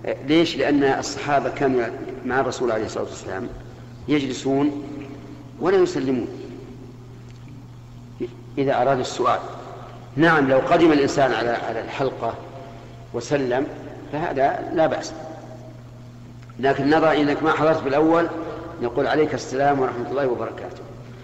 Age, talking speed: 50-69, 105 wpm